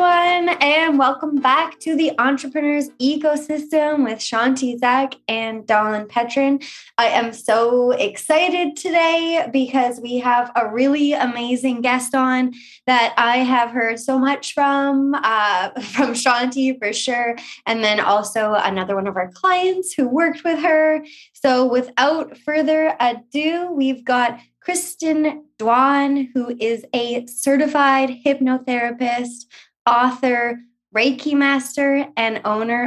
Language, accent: English, American